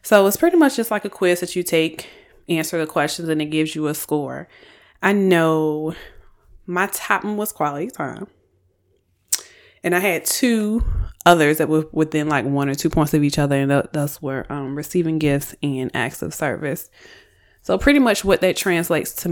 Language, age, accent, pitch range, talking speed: English, 20-39, American, 145-180 Hz, 185 wpm